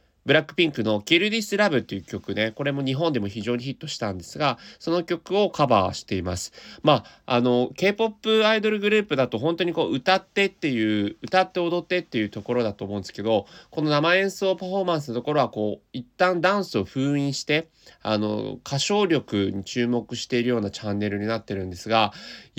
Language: Japanese